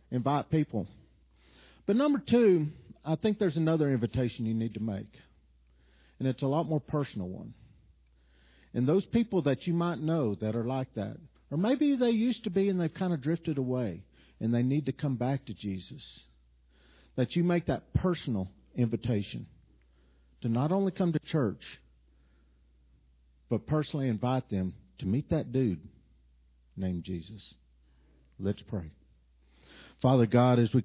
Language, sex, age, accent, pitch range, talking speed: English, male, 50-69, American, 95-145 Hz, 155 wpm